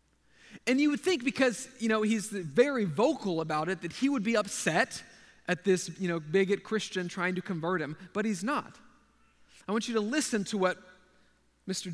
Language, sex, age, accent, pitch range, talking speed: English, male, 40-59, American, 150-220 Hz, 190 wpm